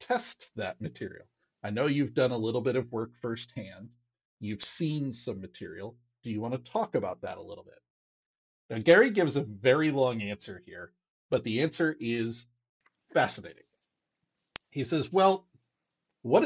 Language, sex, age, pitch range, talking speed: English, male, 40-59, 115-165 Hz, 160 wpm